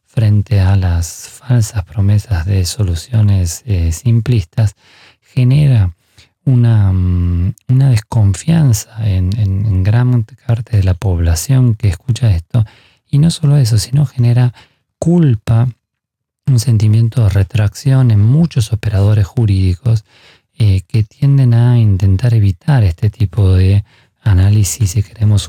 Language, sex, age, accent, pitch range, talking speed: Spanish, male, 40-59, Argentinian, 95-120 Hz, 120 wpm